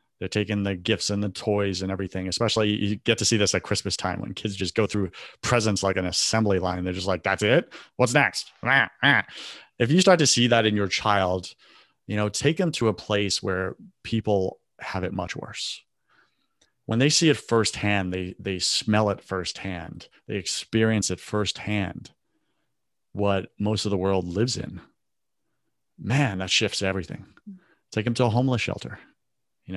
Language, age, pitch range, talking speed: English, 30-49, 95-115 Hz, 180 wpm